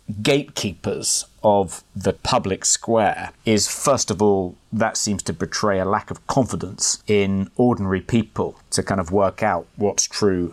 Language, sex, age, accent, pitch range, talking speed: English, male, 30-49, British, 100-120 Hz, 155 wpm